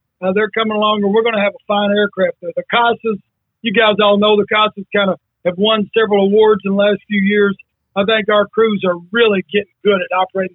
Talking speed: 240 wpm